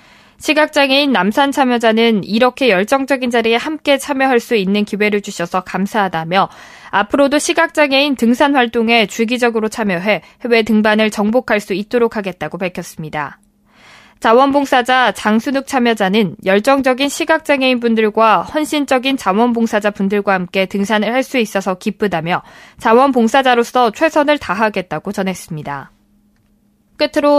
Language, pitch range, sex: Korean, 200-270 Hz, female